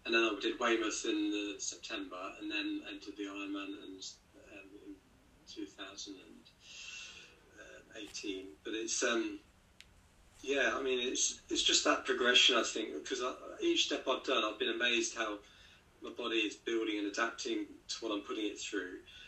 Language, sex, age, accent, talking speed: English, male, 40-59, British, 160 wpm